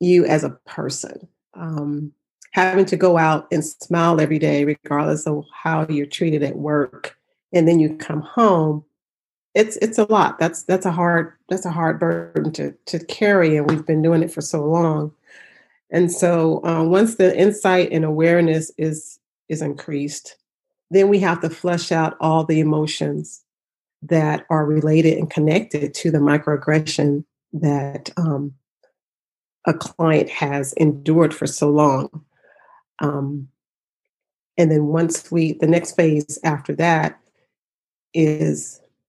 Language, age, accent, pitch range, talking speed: English, 40-59, American, 150-170 Hz, 145 wpm